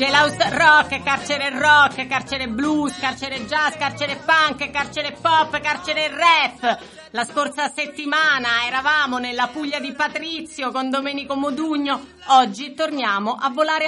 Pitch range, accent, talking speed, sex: 215-300 Hz, native, 130 wpm, female